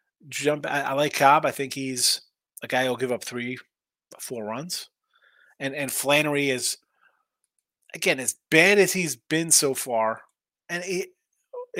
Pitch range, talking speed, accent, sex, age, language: 130-155 Hz, 155 wpm, American, male, 30-49, English